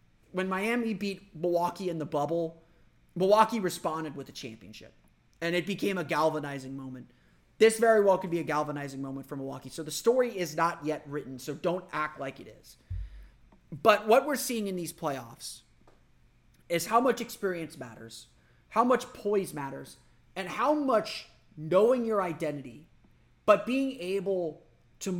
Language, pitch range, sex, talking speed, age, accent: English, 150-215 Hz, male, 160 wpm, 30-49, American